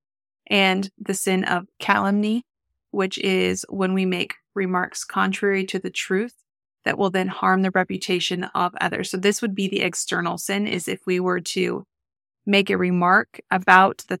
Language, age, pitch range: English, 20-39, 180-205 Hz